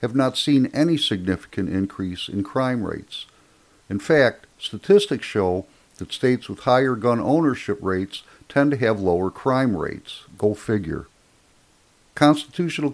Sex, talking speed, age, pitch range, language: male, 135 wpm, 60-79, 100-135 Hz, English